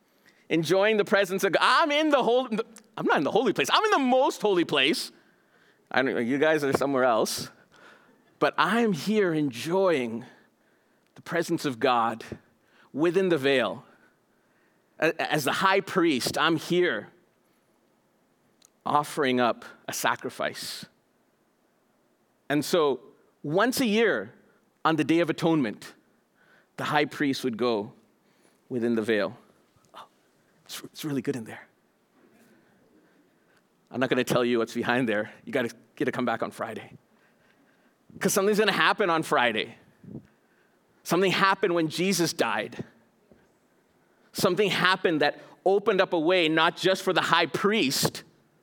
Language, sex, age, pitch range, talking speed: English, male, 40-59, 140-200 Hz, 145 wpm